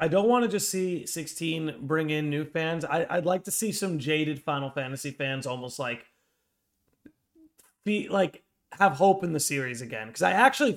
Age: 30-49